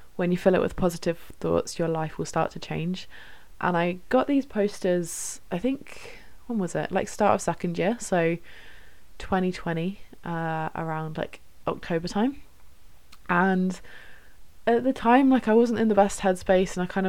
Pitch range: 160-205 Hz